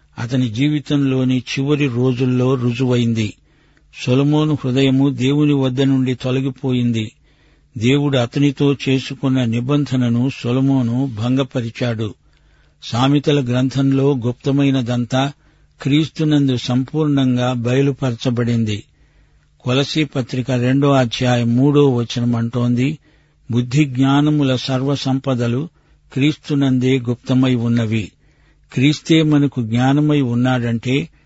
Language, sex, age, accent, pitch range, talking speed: Telugu, male, 60-79, native, 125-140 Hz, 75 wpm